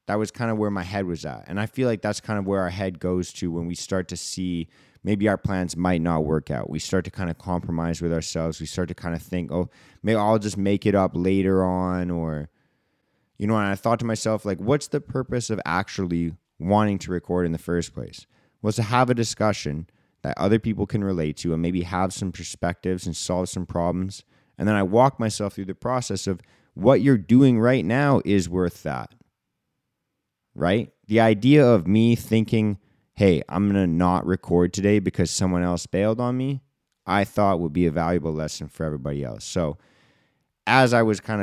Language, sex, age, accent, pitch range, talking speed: English, male, 20-39, American, 85-105 Hz, 215 wpm